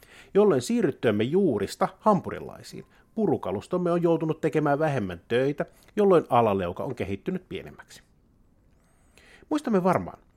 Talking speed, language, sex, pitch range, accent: 100 wpm, Finnish, male, 100-155 Hz, native